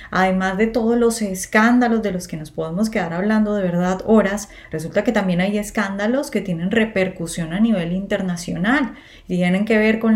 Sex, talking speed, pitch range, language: female, 185 wpm, 180-220 Hz, Spanish